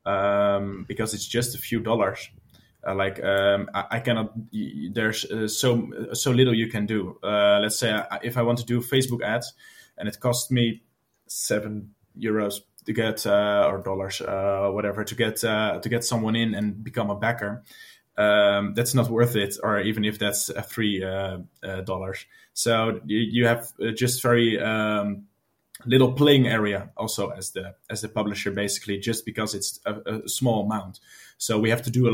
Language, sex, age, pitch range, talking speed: English, male, 20-39, 100-120 Hz, 185 wpm